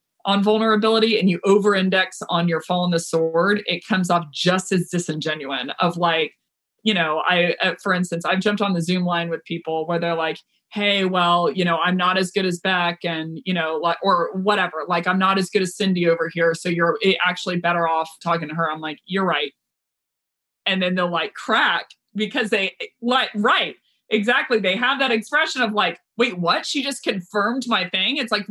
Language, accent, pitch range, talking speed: English, American, 175-225 Hz, 205 wpm